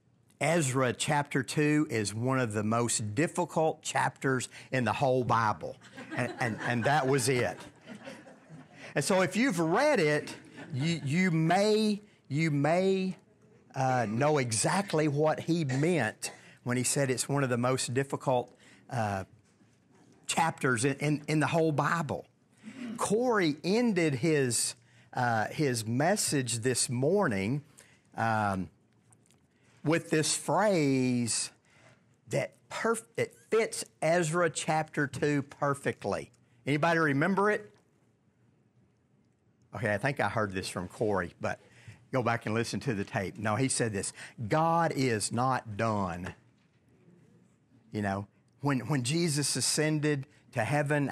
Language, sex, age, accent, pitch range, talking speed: English, male, 50-69, American, 120-155 Hz, 125 wpm